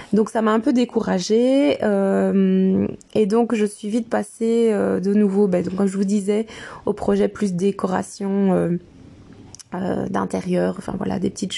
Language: French